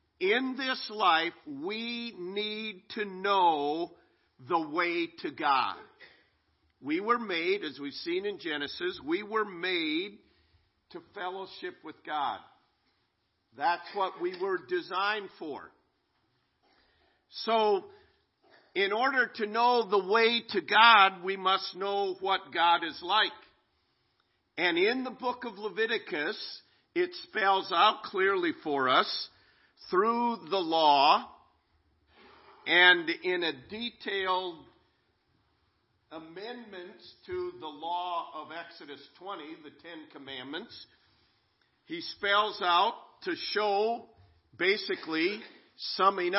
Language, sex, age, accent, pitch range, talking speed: English, male, 50-69, American, 185-295 Hz, 110 wpm